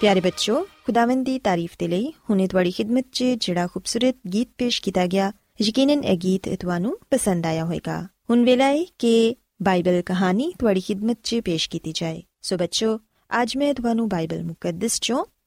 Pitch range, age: 185-260 Hz, 20-39